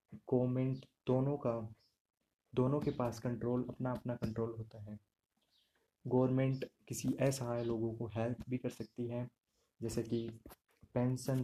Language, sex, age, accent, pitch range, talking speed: Hindi, male, 20-39, native, 115-130 Hz, 130 wpm